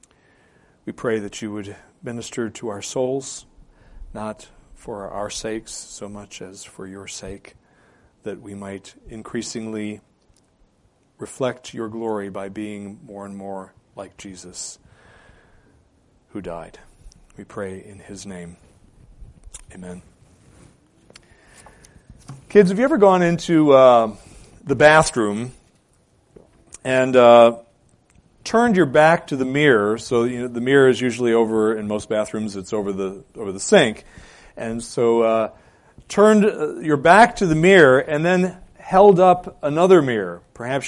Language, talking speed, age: English, 135 wpm, 40-59